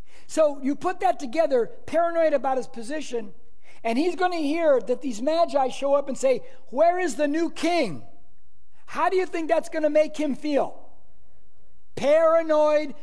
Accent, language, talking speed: American, English, 170 wpm